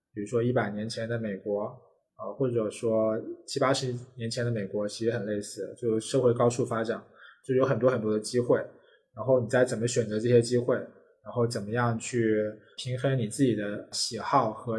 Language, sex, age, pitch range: Chinese, male, 20-39, 110-130 Hz